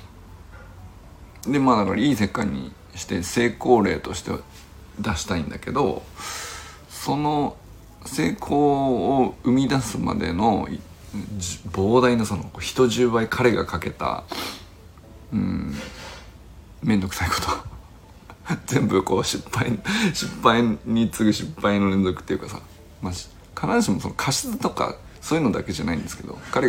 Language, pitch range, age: Japanese, 85-115 Hz, 50-69